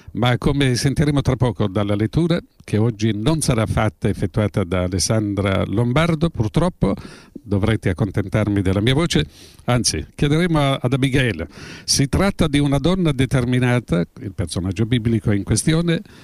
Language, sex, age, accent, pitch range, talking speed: Italian, male, 50-69, native, 110-150 Hz, 140 wpm